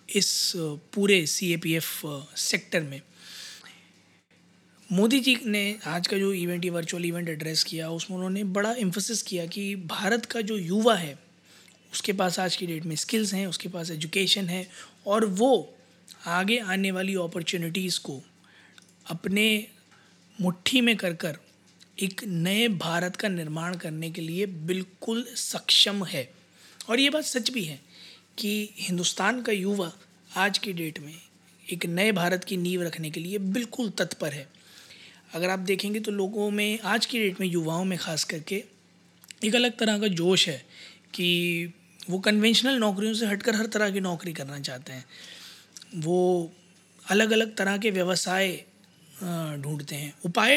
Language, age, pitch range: Hindi, 20-39, 170-210 Hz